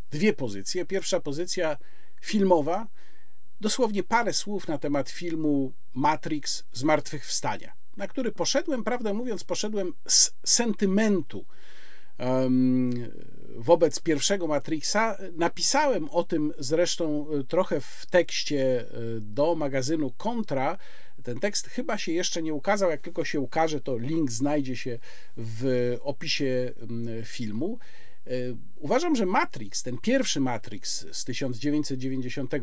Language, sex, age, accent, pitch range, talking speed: Polish, male, 50-69, native, 130-195 Hz, 115 wpm